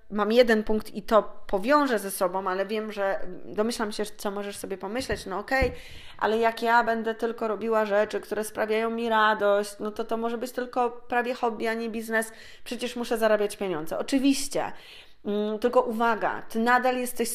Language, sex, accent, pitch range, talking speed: Polish, female, native, 205-230 Hz, 175 wpm